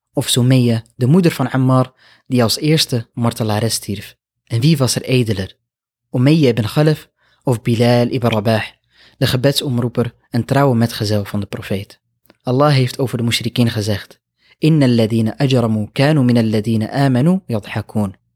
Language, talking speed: Dutch, 130 wpm